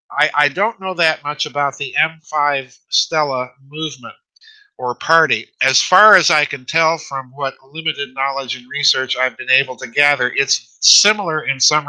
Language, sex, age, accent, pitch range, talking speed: English, male, 50-69, American, 130-160 Hz, 170 wpm